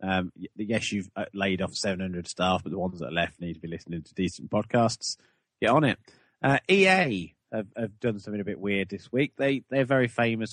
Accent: British